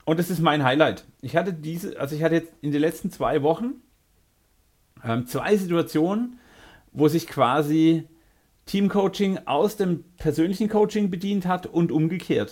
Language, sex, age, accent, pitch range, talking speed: German, male, 40-59, German, 130-170 Hz, 155 wpm